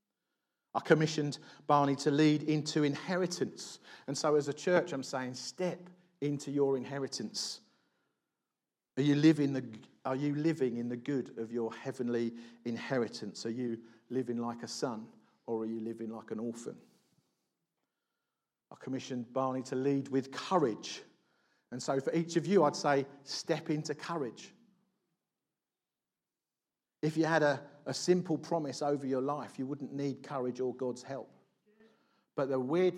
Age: 50-69